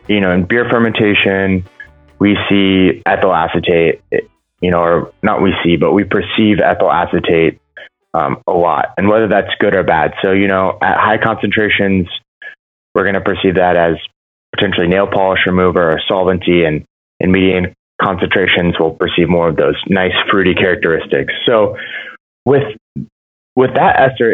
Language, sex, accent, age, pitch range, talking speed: English, male, American, 20-39, 90-105 Hz, 160 wpm